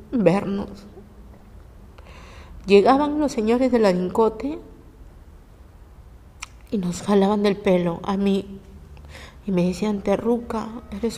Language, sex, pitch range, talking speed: Spanish, female, 160-230 Hz, 95 wpm